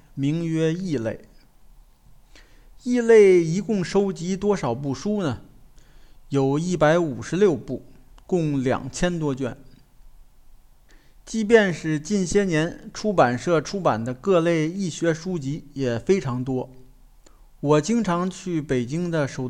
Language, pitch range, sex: Chinese, 140-190 Hz, male